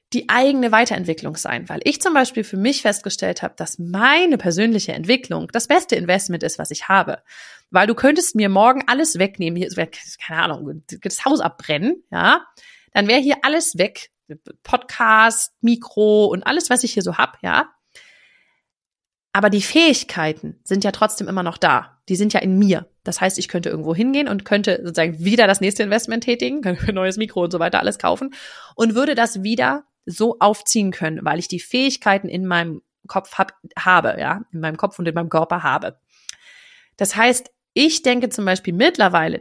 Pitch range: 180-250 Hz